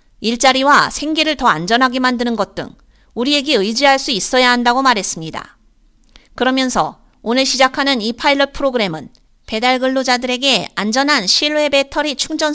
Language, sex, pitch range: Korean, female, 225-280 Hz